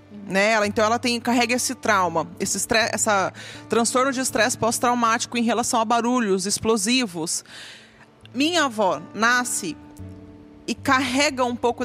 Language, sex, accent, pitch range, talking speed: Portuguese, female, Brazilian, 185-245 Hz, 130 wpm